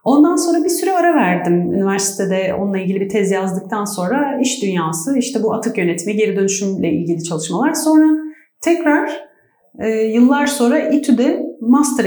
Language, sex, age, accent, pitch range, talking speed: Turkish, female, 40-59, native, 190-250 Hz, 145 wpm